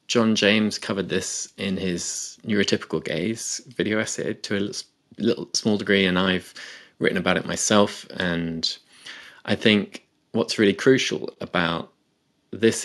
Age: 20-39